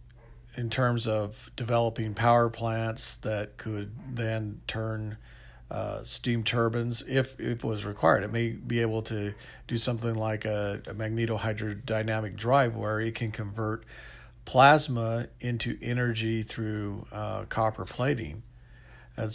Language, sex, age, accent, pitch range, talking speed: English, male, 50-69, American, 105-120 Hz, 130 wpm